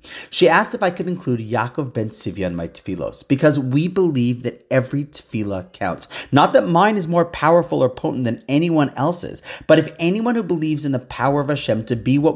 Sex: male